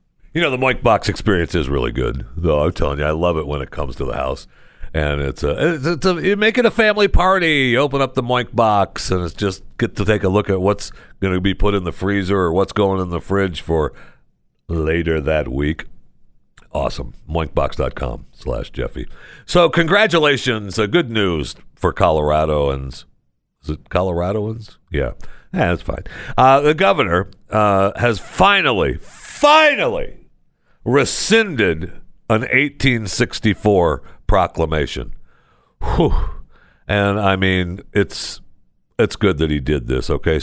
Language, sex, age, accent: English, male, 60-79, American